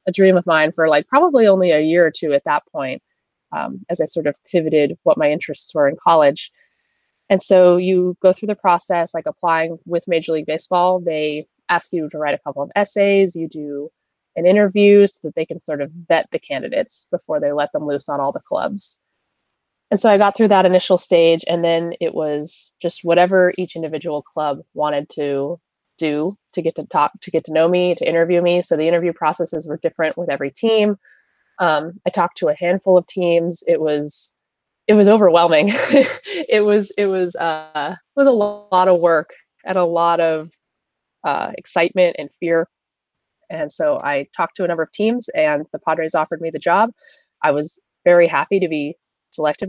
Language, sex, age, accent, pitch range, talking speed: English, female, 20-39, American, 155-195 Hz, 200 wpm